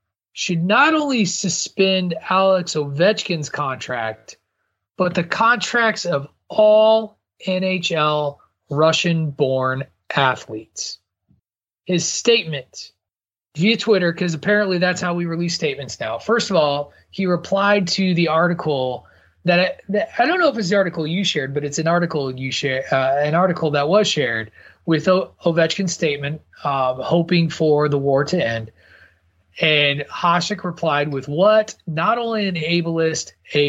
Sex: male